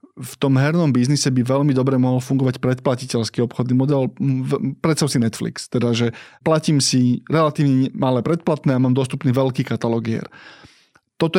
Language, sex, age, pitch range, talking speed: Slovak, male, 20-39, 125-150 Hz, 150 wpm